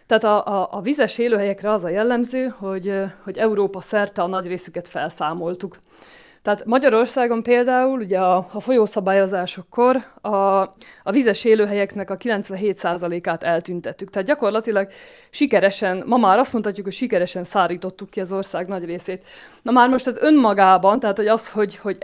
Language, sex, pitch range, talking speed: Hungarian, female, 190-230 Hz, 155 wpm